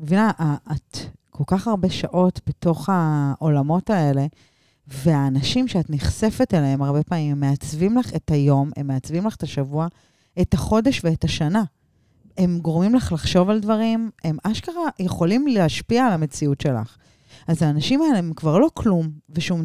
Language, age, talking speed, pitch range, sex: Hebrew, 30-49, 155 wpm, 145-200 Hz, female